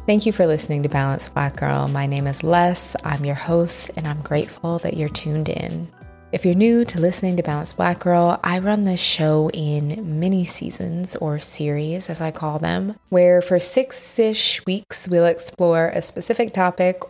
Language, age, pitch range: English, 20-39, 145-175 Hz